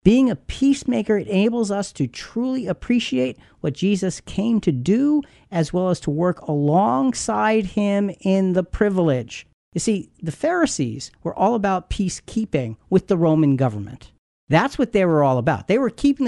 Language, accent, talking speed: English, American, 160 wpm